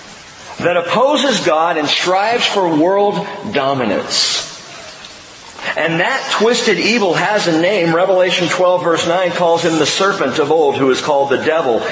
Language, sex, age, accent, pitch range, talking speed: English, male, 40-59, American, 135-175 Hz, 150 wpm